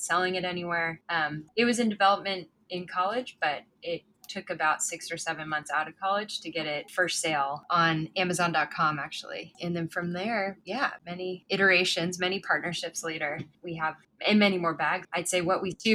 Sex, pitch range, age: female, 160-185 Hz, 10-29